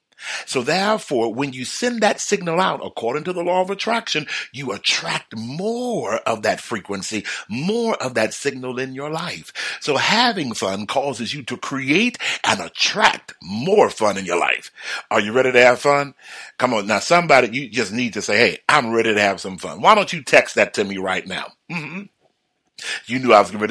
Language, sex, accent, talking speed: English, male, American, 200 wpm